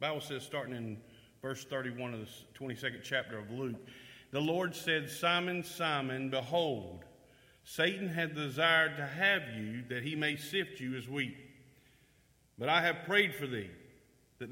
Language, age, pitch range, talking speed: English, 50-69, 130-165 Hz, 155 wpm